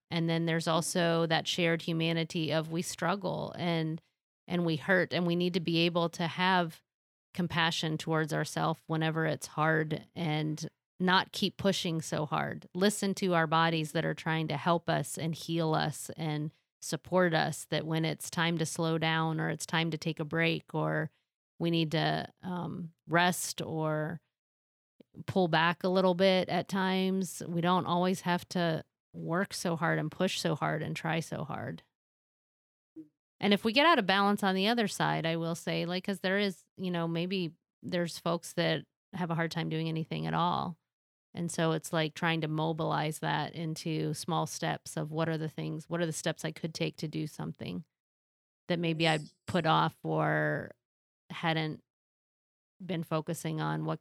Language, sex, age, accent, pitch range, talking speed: English, female, 30-49, American, 155-175 Hz, 180 wpm